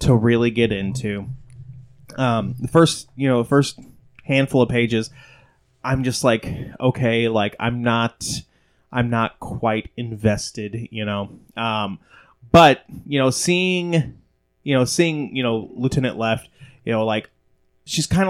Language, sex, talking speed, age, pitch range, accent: English, male, 140 wpm, 20-39, 115-140 Hz, American